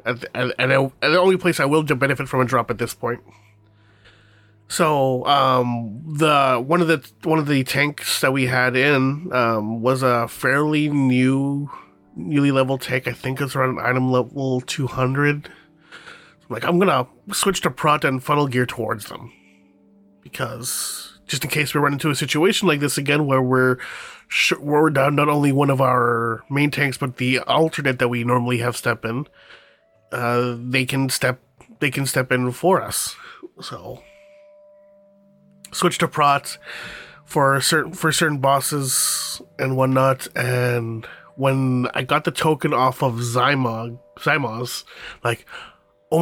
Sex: male